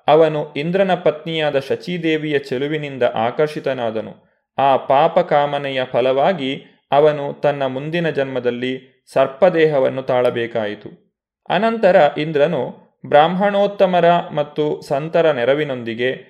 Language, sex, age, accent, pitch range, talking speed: Kannada, male, 30-49, native, 135-175 Hz, 80 wpm